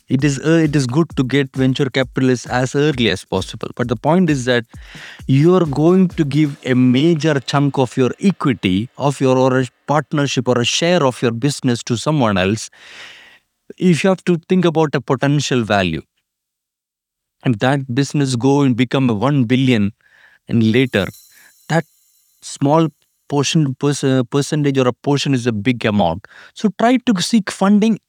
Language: English